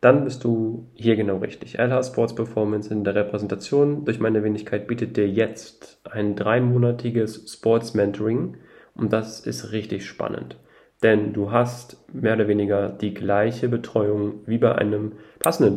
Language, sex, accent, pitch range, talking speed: German, male, German, 105-115 Hz, 150 wpm